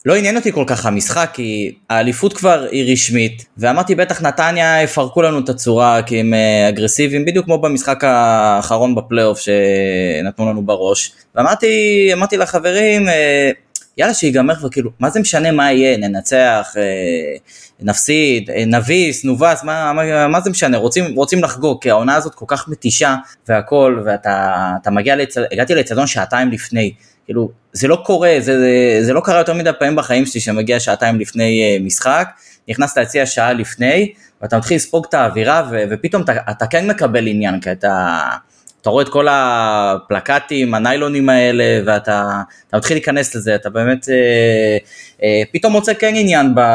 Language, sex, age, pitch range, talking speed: Hebrew, male, 20-39, 110-155 Hz, 155 wpm